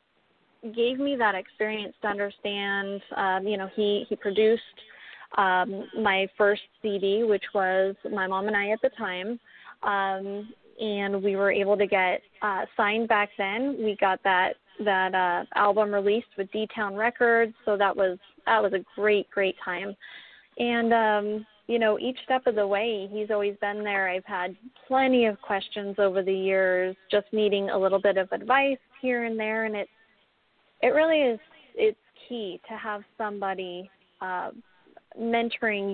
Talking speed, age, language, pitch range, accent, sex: 165 wpm, 20-39, English, 190-220 Hz, American, female